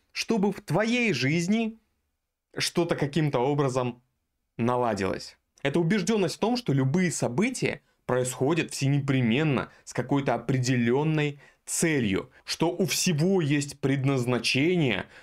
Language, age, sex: Russian, 20-39, male